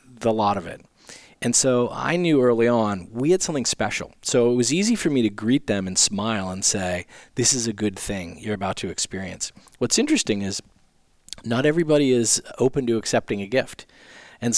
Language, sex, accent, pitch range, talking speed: English, male, American, 100-125 Hz, 200 wpm